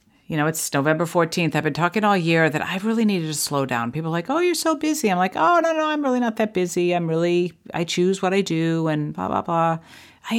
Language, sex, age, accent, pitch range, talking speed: English, female, 50-69, American, 155-210 Hz, 265 wpm